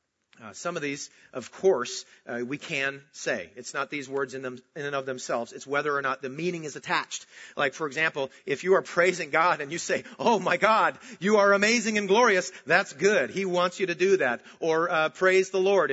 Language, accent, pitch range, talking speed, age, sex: English, American, 130-185 Hz, 220 wpm, 40-59, male